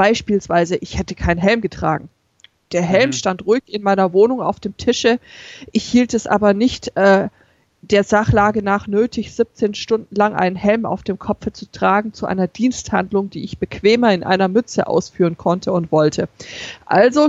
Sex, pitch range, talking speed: female, 180-220 Hz, 175 wpm